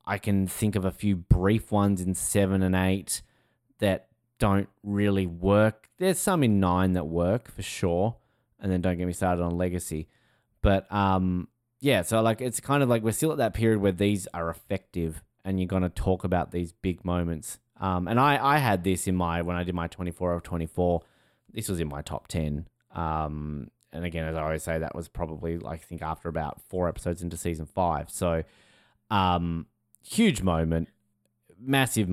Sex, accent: male, Australian